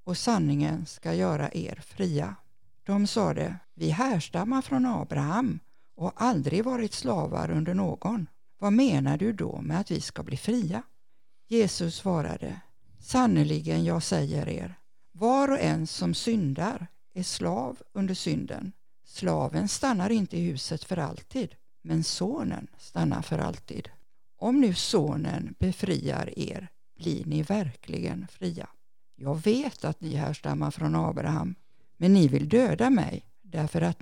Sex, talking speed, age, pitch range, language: female, 140 wpm, 60-79, 150-205 Hz, Swedish